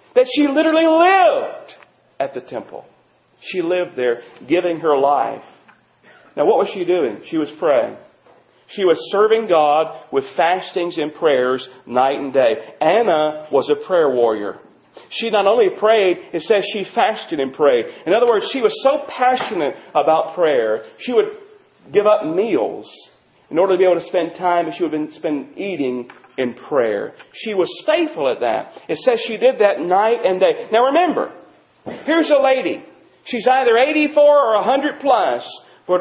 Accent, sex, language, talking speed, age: American, male, English, 170 wpm, 40-59